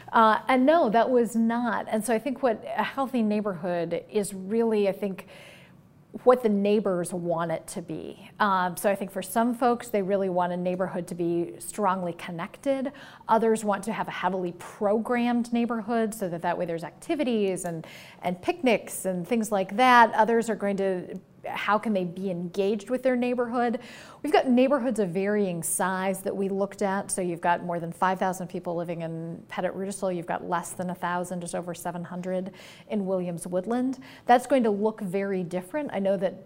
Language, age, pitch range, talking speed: English, 40-59, 185-230 Hz, 190 wpm